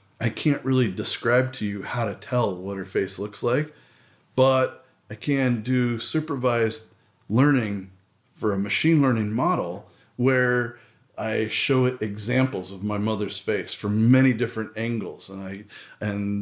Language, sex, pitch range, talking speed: English, male, 105-125 Hz, 150 wpm